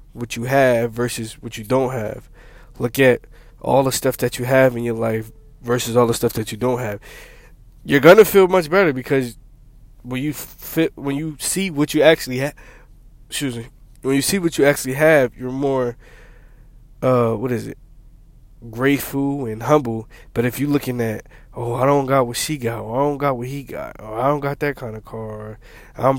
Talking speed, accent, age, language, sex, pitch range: 205 wpm, American, 20-39, English, male, 120-140 Hz